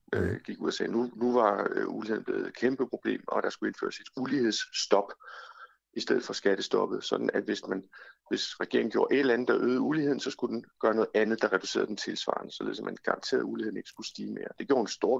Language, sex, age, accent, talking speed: Danish, male, 60-79, native, 235 wpm